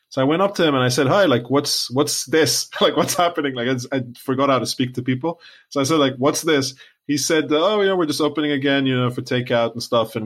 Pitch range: 125-155 Hz